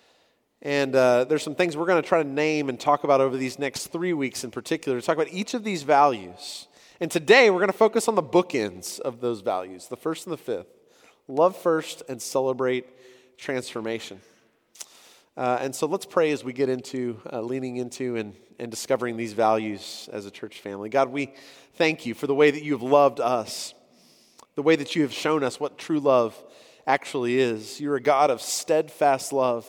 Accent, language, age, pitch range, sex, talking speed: American, English, 30-49, 125-160 Hz, male, 205 wpm